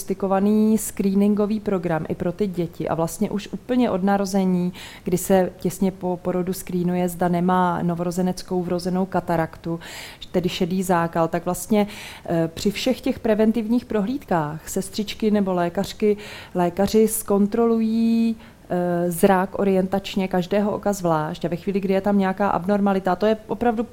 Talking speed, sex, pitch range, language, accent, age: 140 wpm, female, 180-205 Hz, Czech, native, 30-49